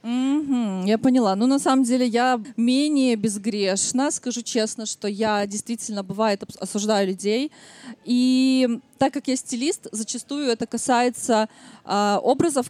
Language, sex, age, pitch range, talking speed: Russian, female, 20-39, 220-255 Hz, 130 wpm